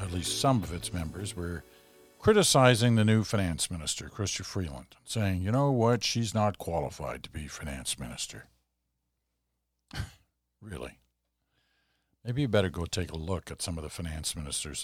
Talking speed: 160 wpm